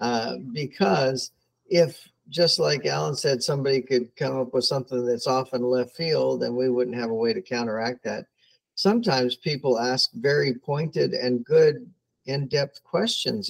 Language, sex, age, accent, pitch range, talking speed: English, male, 50-69, American, 125-155 Hz, 160 wpm